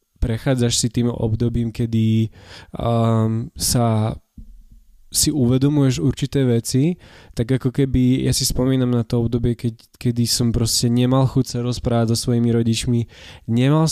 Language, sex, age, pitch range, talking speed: Slovak, male, 20-39, 115-130 Hz, 135 wpm